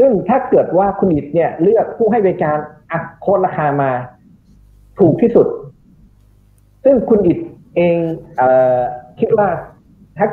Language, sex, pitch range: Thai, male, 125-185 Hz